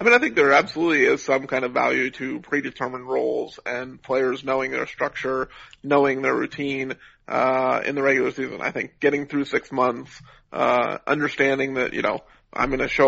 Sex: male